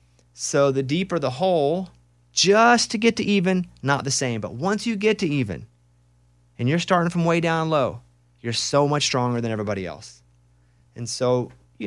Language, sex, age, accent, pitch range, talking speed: English, male, 30-49, American, 105-155 Hz, 180 wpm